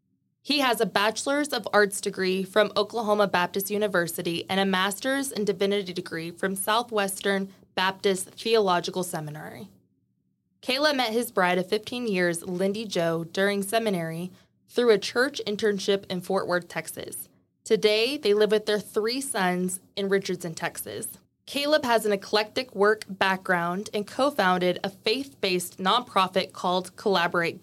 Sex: female